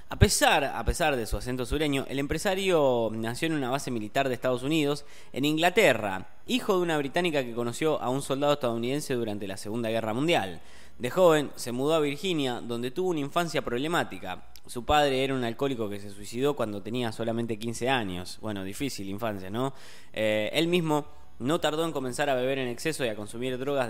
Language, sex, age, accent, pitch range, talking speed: Spanish, male, 20-39, Argentinian, 115-150 Hz, 195 wpm